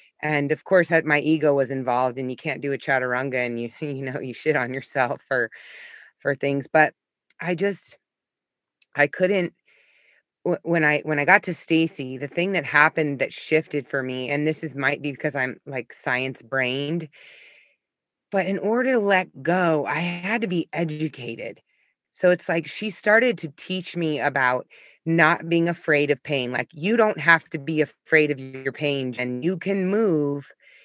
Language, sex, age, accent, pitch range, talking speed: English, female, 20-39, American, 140-180 Hz, 180 wpm